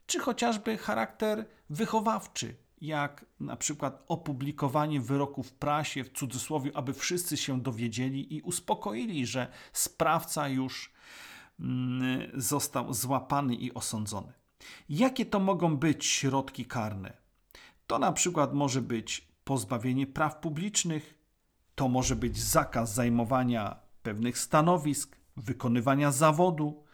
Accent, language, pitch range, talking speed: native, Polish, 130-150 Hz, 110 wpm